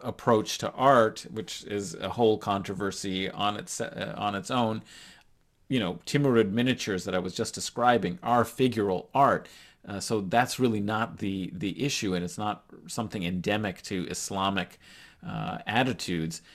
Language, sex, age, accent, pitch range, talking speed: English, male, 40-59, American, 95-110 Hz, 155 wpm